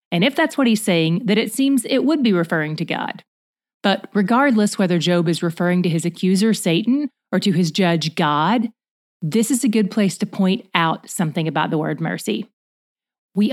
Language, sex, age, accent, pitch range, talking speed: English, female, 30-49, American, 175-225 Hz, 195 wpm